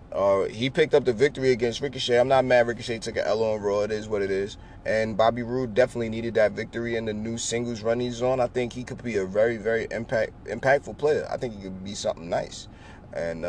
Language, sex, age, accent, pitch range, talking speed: English, male, 20-39, American, 105-120 Hz, 245 wpm